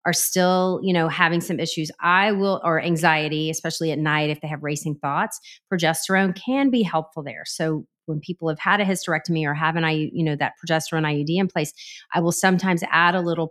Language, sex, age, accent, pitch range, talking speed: English, female, 30-49, American, 155-185 Hz, 215 wpm